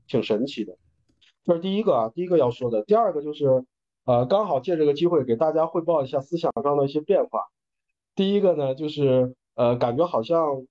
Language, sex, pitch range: Chinese, male, 120-170 Hz